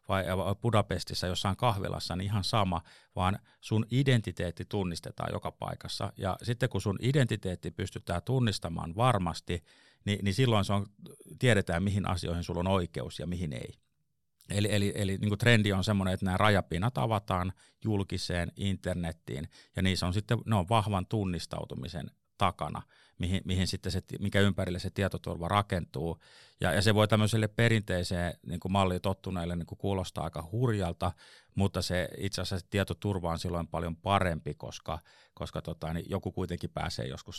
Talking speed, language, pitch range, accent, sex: 155 wpm, Finnish, 85-105 Hz, native, male